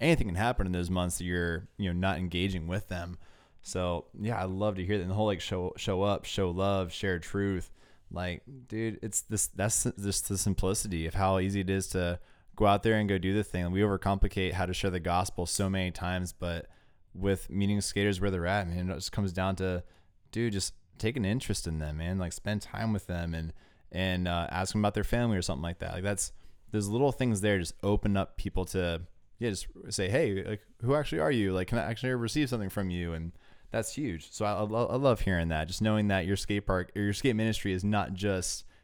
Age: 20-39